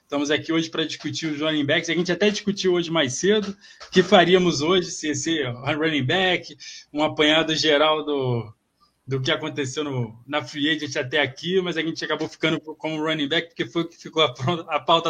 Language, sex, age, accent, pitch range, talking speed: Portuguese, male, 20-39, Brazilian, 150-175 Hz, 210 wpm